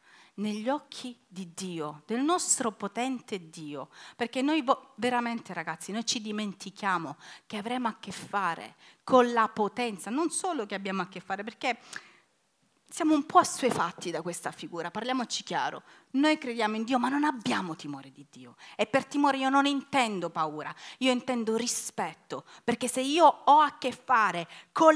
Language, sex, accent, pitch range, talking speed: Italian, female, native, 230-320 Hz, 165 wpm